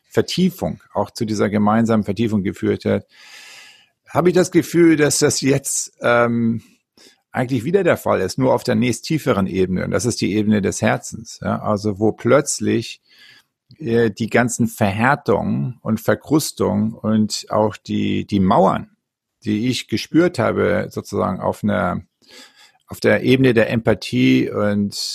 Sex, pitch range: male, 105-135 Hz